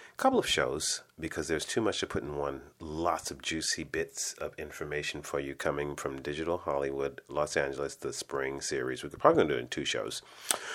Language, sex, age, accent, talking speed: English, male, 40-59, American, 195 wpm